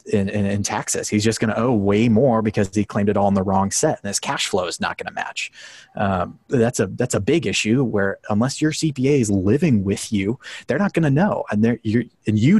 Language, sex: English, male